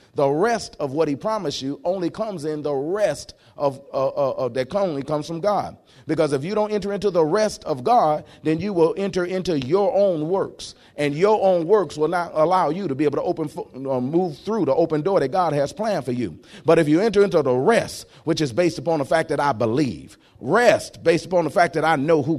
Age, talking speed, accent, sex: 40-59, 240 wpm, American, male